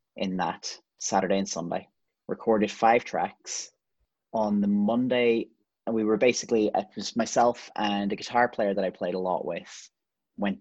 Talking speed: 165 wpm